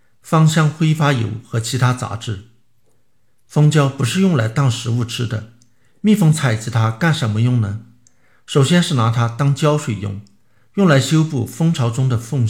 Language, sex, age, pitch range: Chinese, male, 50-69, 115-145 Hz